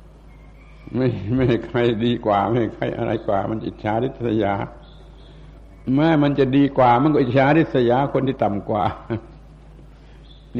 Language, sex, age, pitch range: Thai, male, 60-79, 105-130 Hz